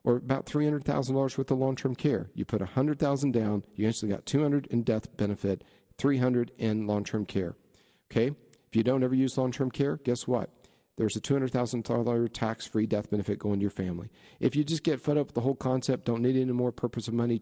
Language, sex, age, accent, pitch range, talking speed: English, male, 50-69, American, 110-135 Hz, 210 wpm